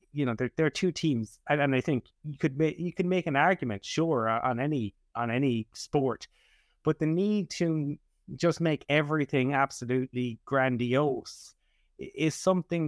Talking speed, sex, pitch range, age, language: 160 wpm, male, 125-155 Hz, 30-49, English